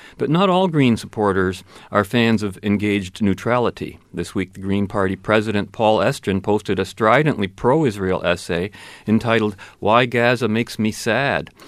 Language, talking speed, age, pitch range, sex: English, 150 wpm, 40-59, 95-120 Hz, male